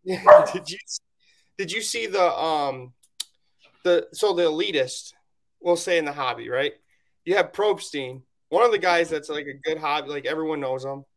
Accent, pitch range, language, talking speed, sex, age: American, 140-185 Hz, English, 175 wpm, male, 20-39